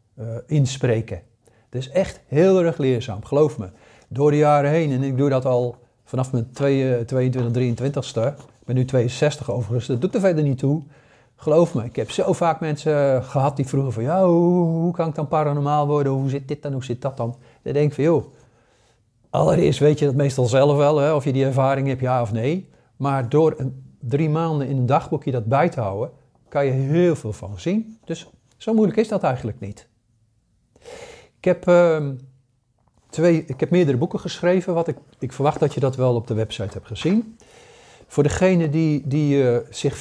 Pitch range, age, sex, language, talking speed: 120-155 Hz, 50-69, male, Dutch, 205 wpm